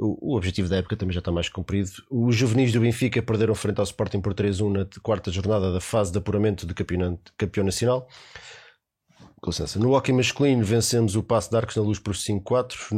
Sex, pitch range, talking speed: male, 95-115 Hz, 205 wpm